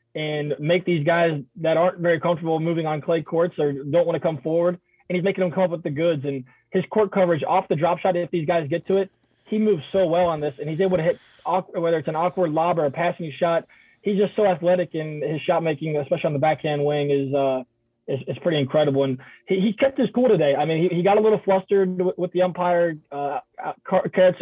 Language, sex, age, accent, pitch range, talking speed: English, male, 20-39, American, 155-180 Hz, 245 wpm